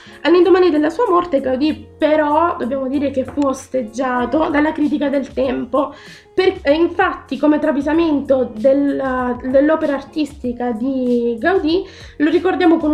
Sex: female